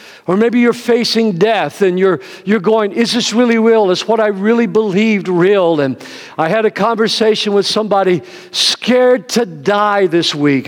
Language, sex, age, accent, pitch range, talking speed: English, male, 50-69, American, 190-240 Hz, 180 wpm